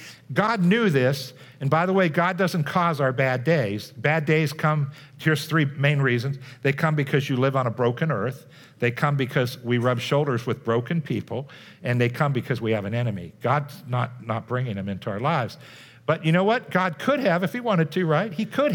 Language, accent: English, American